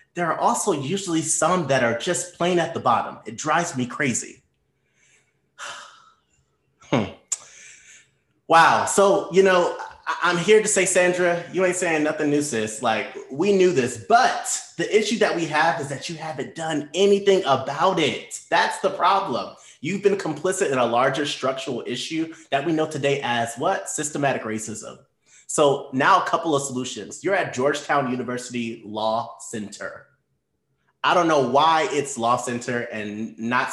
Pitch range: 125-175 Hz